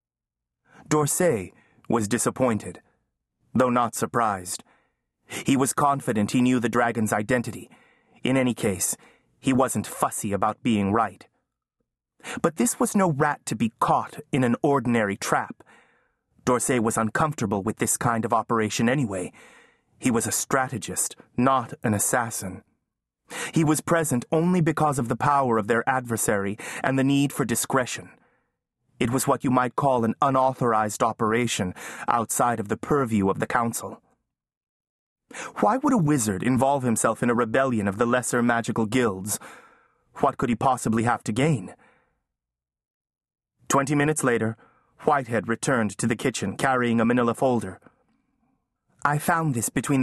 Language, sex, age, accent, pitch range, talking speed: English, male, 30-49, American, 115-135 Hz, 145 wpm